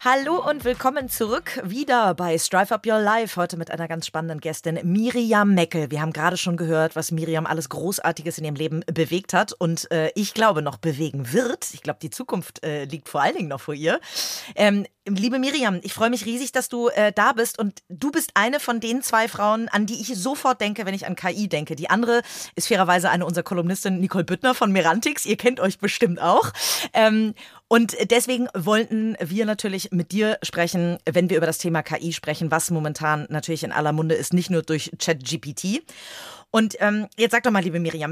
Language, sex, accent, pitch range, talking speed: German, female, German, 165-230 Hz, 210 wpm